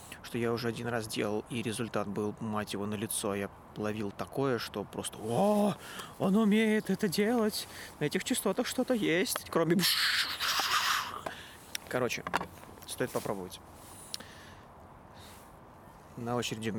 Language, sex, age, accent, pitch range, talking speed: Russian, male, 30-49, native, 110-160 Hz, 120 wpm